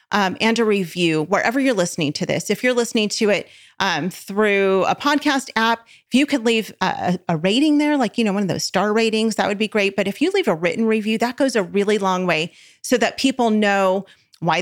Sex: female